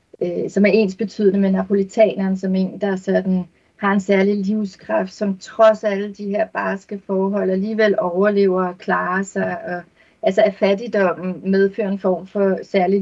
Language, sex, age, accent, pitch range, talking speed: Danish, female, 30-49, native, 190-215 Hz, 160 wpm